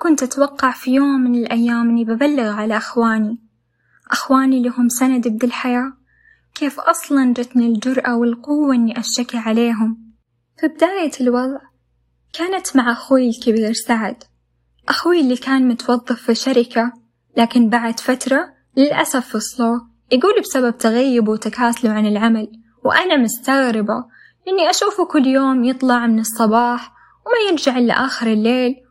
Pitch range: 225-265 Hz